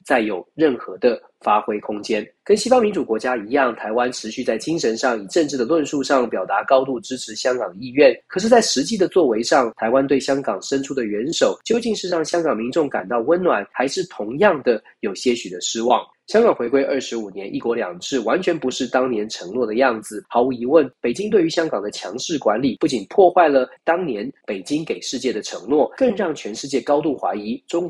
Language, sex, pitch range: Chinese, male, 120-165 Hz